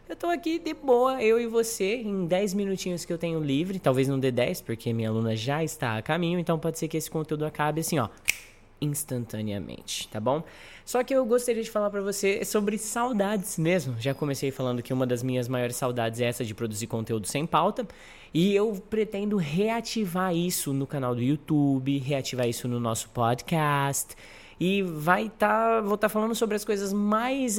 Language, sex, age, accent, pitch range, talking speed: Portuguese, male, 20-39, Brazilian, 125-185 Hz, 195 wpm